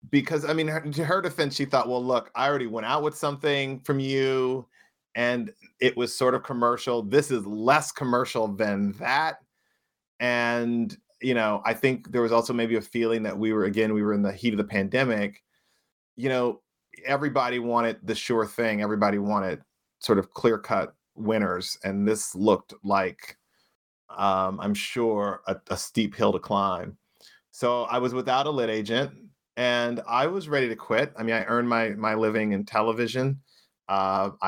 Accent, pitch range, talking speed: American, 105-125 Hz, 180 wpm